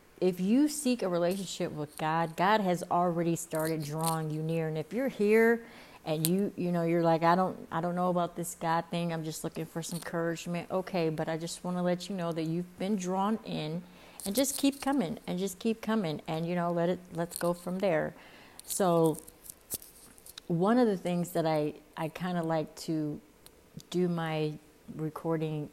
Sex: female